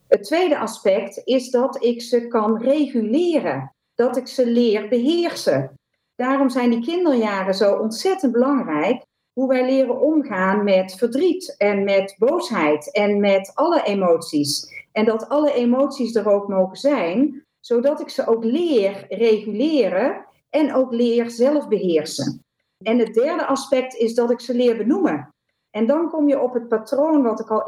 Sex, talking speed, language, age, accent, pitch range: female, 160 wpm, Dutch, 40-59, Dutch, 220-275 Hz